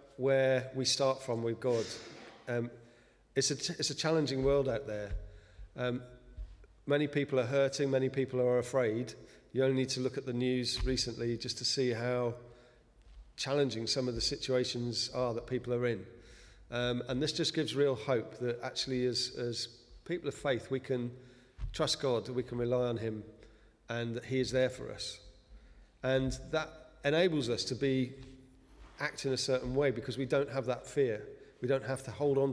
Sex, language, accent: male, English, British